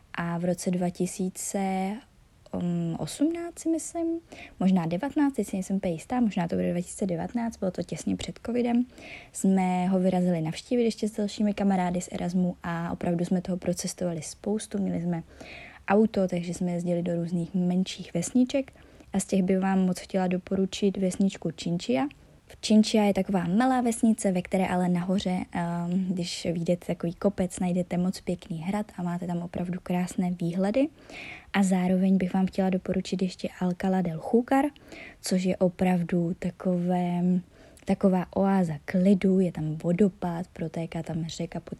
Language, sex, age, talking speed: Czech, female, 20-39, 150 wpm